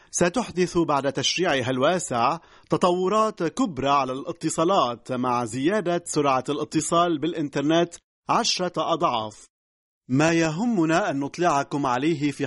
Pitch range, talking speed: 140-180 Hz, 100 wpm